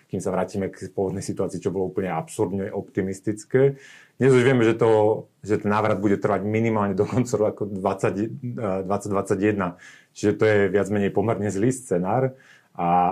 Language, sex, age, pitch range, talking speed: Slovak, male, 30-49, 95-110 Hz, 165 wpm